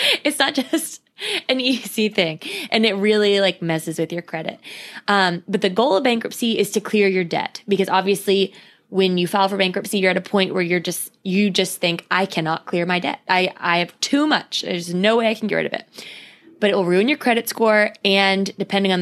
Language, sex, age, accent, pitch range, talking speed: English, female, 20-39, American, 180-230 Hz, 225 wpm